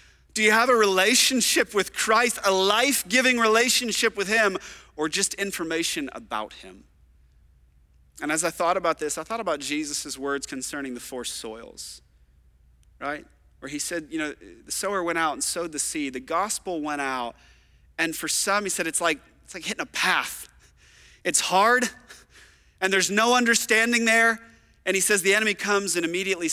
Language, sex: English, male